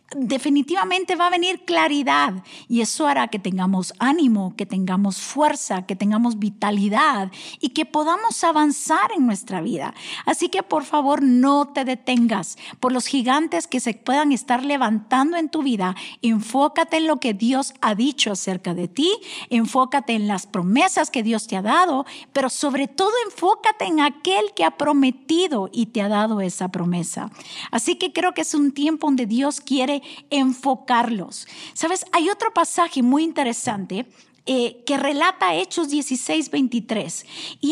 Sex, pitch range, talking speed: female, 235-325 Hz, 160 wpm